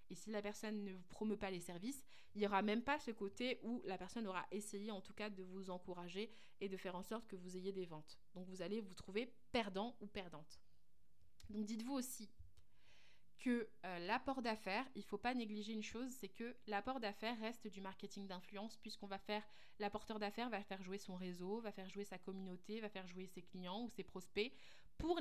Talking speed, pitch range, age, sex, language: 220 wpm, 190-225 Hz, 20-39, female, French